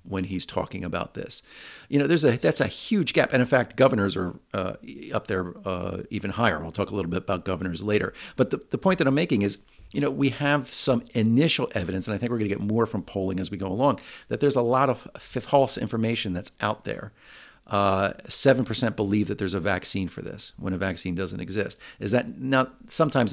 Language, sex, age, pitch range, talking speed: English, male, 40-59, 100-120 Hz, 235 wpm